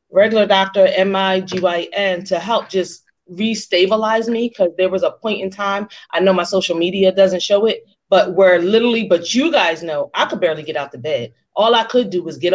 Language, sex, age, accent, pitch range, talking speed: English, female, 30-49, American, 170-220 Hz, 205 wpm